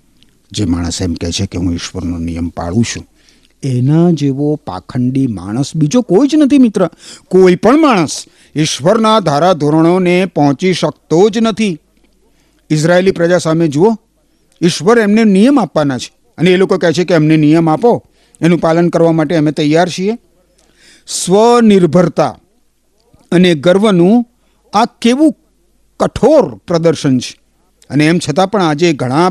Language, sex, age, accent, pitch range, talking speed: Gujarati, male, 50-69, native, 150-205 Hz, 140 wpm